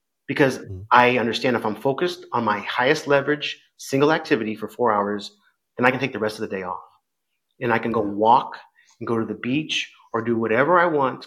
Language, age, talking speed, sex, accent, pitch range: English, 30-49, 215 wpm, male, American, 115-155 Hz